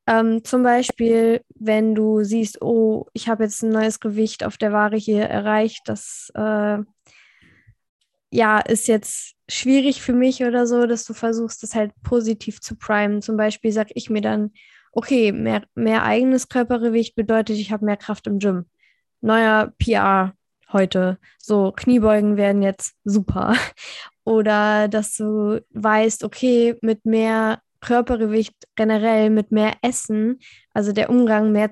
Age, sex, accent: 10-29, female, German